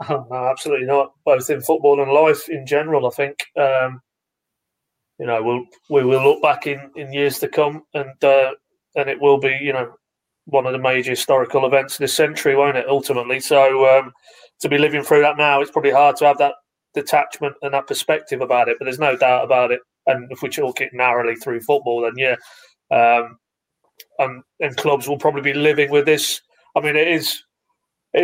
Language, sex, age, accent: English, male, 30-49, British